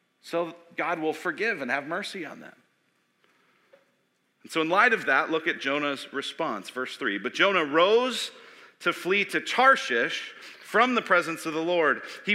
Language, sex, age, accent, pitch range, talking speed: English, male, 40-59, American, 150-230 Hz, 170 wpm